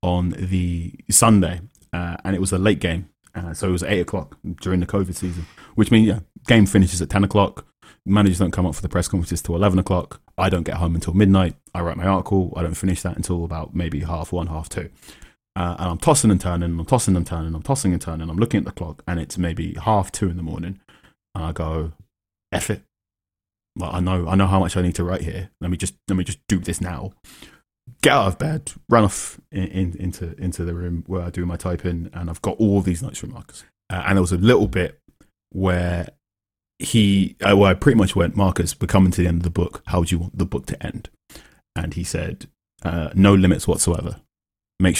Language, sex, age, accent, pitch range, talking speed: English, male, 30-49, British, 85-95 Hz, 245 wpm